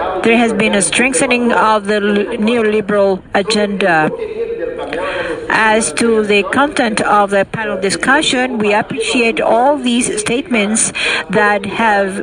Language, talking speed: English, 120 wpm